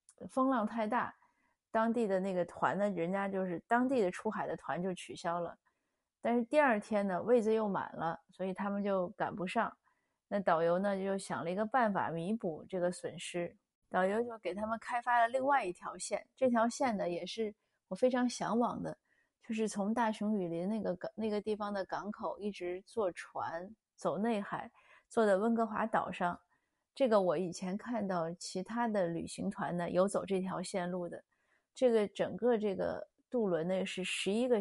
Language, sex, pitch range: Chinese, female, 180-220 Hz